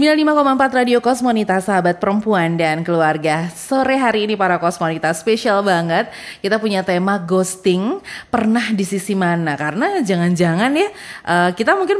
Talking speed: 140 wpm